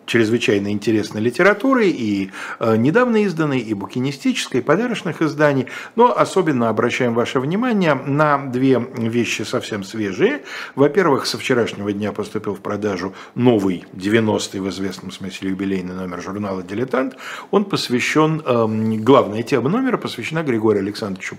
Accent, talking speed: native, 130 wpm